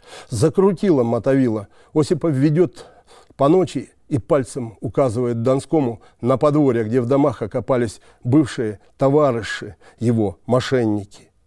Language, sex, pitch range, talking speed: Russian, male, 115-145 Hz, 105 wpm